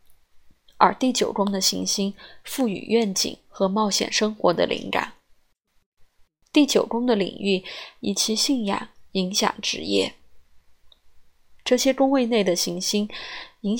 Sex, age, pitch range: female, 20-39, 175-240 Hz